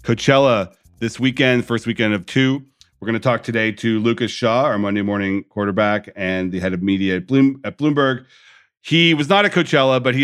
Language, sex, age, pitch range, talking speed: English, male, 40-59, 95-110 Hz, 200 wpm